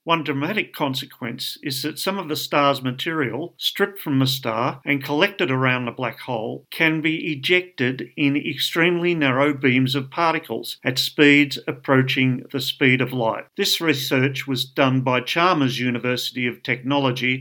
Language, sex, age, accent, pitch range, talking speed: English, male, 50-69, Australian, 130-155 Hz, 155 wpm